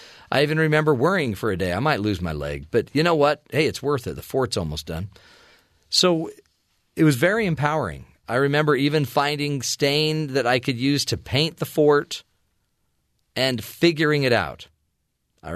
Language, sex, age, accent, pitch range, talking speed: English, male, 40-59, American, 115-150 Hz, 180 wpm